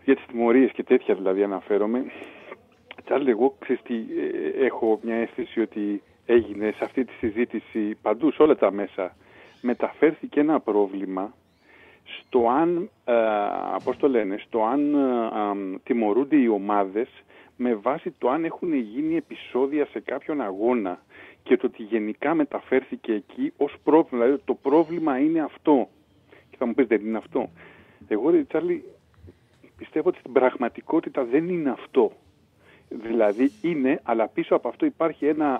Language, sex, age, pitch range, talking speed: Greek, male, 50-69, 110-180 Hz, 145 wpm